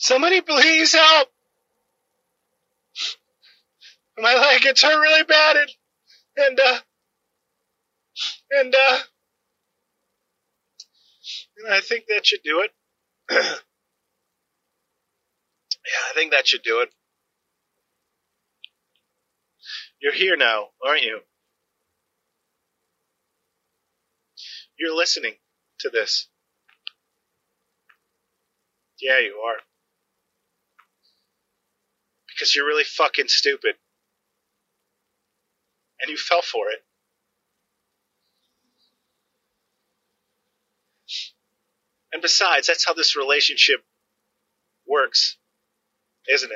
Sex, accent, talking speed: male, American, 75 wpm